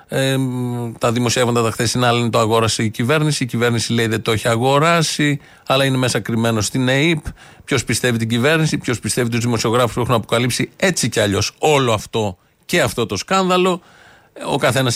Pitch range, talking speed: 110-145 Hz, 175 wpm